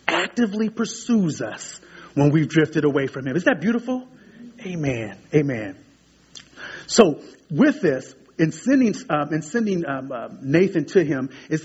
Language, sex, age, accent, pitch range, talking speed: English, male, 30-49, American, 140-185 Hz, 145 wpm